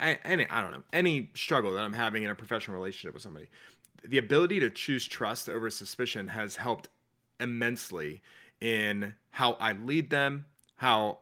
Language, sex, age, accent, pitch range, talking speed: English, male, 30-49, American, 110-140 Hz, 165 wpm